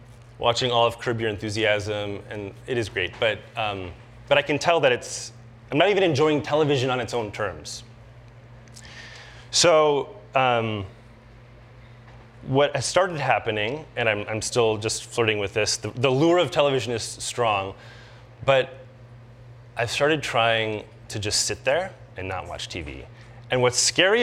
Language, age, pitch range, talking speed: English, 30-49, 115-125 Hz, 155 wpm